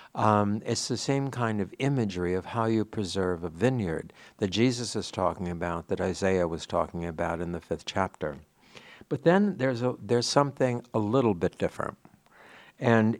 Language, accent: English, American